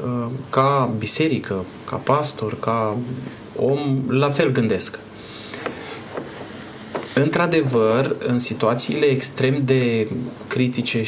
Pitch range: 115-140 Hz